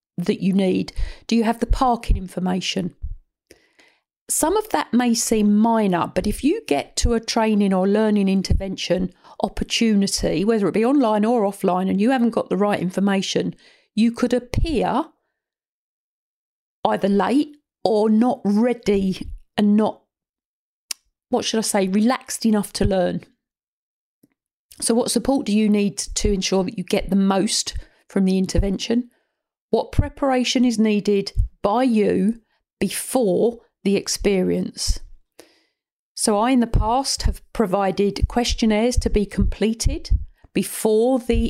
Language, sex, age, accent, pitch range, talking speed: English, female, 50-69, British, 195-240 Hz, 135 wpm